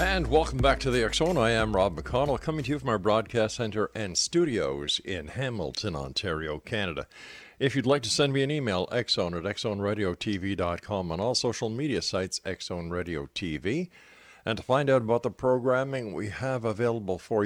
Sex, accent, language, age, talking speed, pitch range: male, American, English, 50-69, 175 wpm, 90-125 Hz